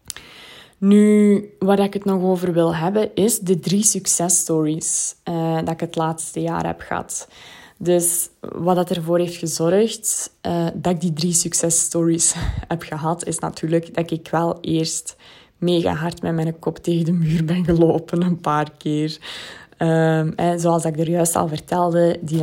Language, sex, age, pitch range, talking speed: Dutch, female, 20-39, 160-175 Hz, 165 wpm